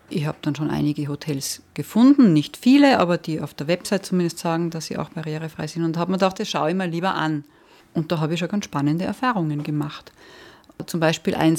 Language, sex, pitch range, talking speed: German, female, 155-195 Hz, 235 wpm